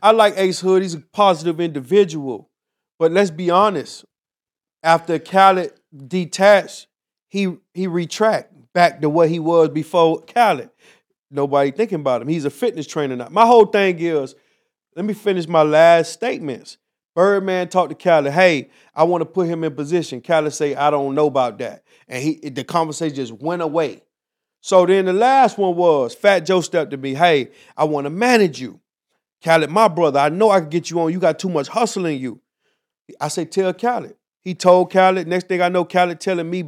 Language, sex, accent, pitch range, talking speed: English, male, American, 155-190 Hz, 195 wpm